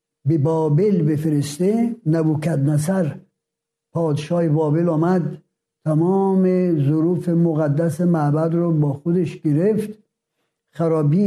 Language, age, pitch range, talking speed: Persian, 60-79, 160-210 Hz, 90 wpm